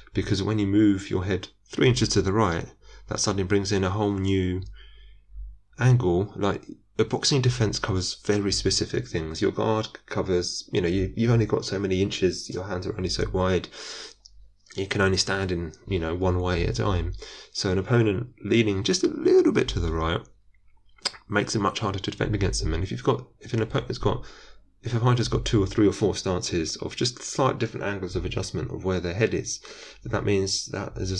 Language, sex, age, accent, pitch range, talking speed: English, male, 30-49, British, 90-105 Hz, 210 wpm